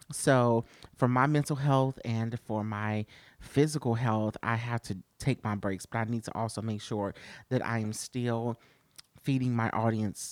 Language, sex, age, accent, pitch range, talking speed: English, male, 30-49, American, 110-130 Hz, 175 wpm